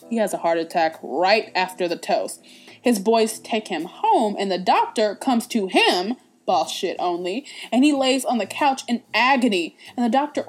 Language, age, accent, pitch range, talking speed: English, 20-39, American, 215-315 Hz, 195 wpm